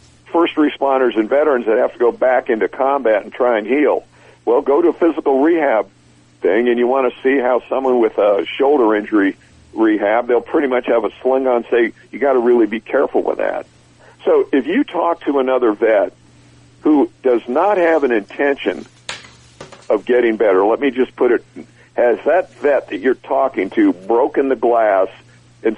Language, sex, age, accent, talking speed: English, male, 60-79, American, 195 wpm